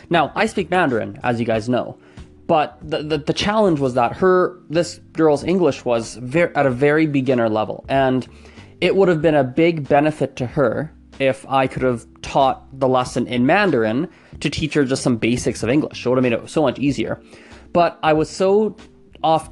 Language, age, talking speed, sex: English, 20-39, 205 wpm, male